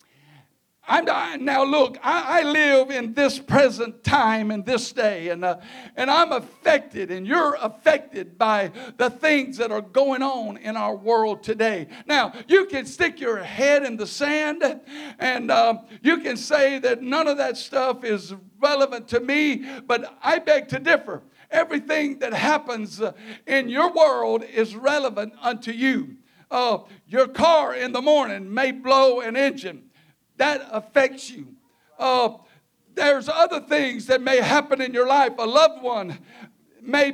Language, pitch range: English, 235-295 Hz